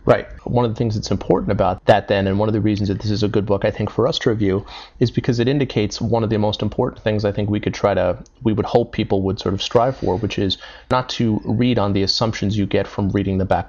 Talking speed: 290 wpm